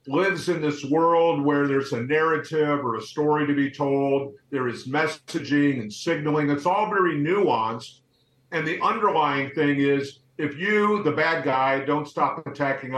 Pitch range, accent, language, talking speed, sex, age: 135-160 Hz, American, English, 165 wpm, male, 50-69